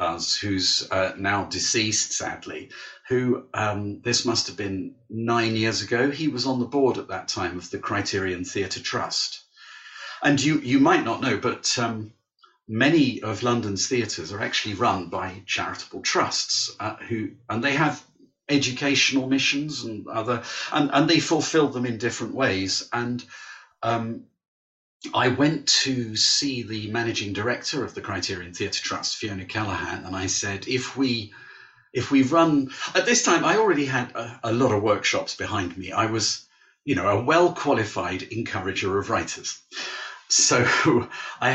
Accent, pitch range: British, 105-140 Hz